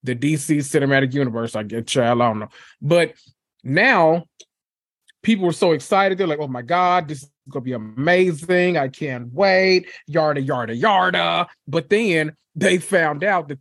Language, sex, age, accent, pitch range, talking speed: English, male, 20-39, American, 135-175 Hz, 170 wpm